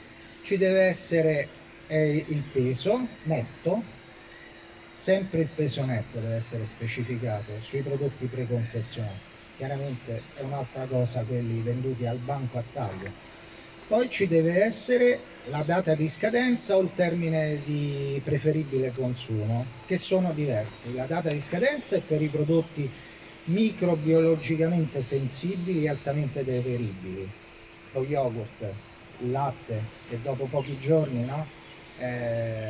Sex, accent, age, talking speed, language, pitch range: male, native, 40-59, 120 wpm, Italian, 125-160 Hz